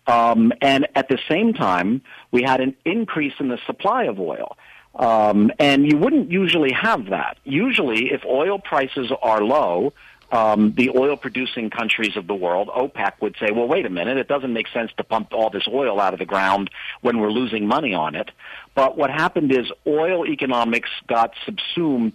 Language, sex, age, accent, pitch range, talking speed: English, male, 50-69, American, 115-145 Hz, 185 wpm